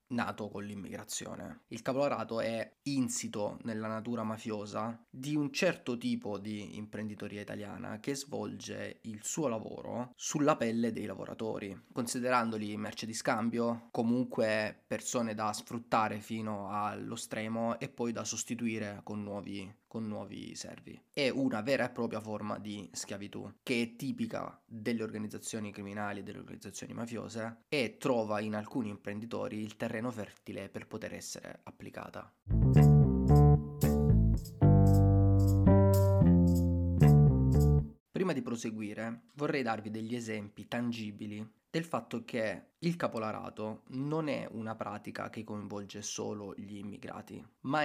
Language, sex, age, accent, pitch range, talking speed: Italian, male, 20-39, native, 105-115 Hz, 125 wpm